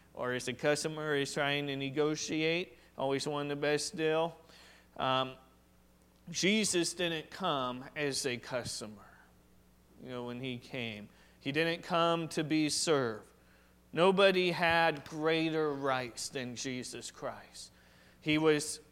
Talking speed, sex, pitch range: 125 wpm, male, 130-175 Hz